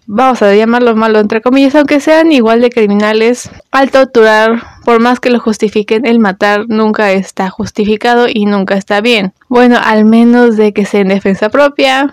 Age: 20-39